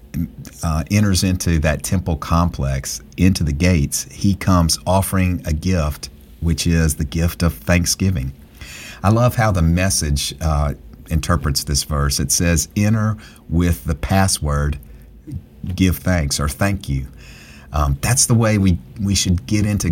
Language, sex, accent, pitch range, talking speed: English, male, American, 75-95 Hz, 150 wpm